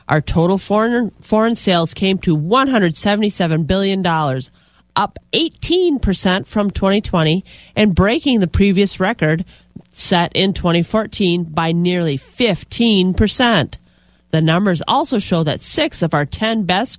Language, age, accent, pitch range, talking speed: English, 30-49, American, 160-210 Hz, 120 wpm